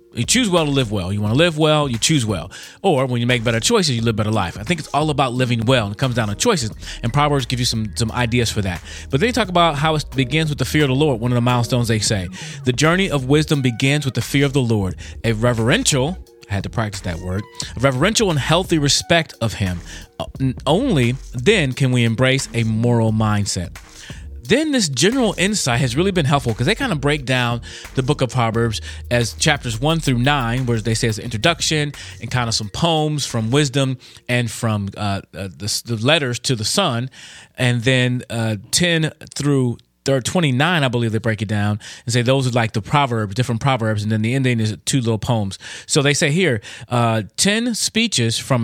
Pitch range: 110-145 Hz